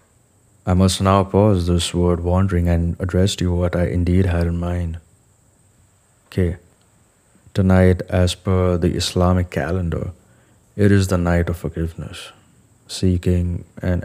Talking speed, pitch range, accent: 135 wpm, 90-100 Hz, Indian